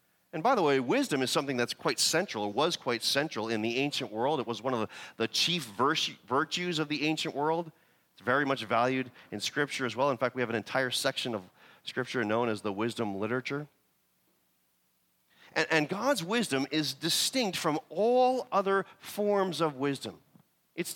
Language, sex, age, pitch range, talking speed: English, male, 40-59, 100-155 Hz, 185 wpm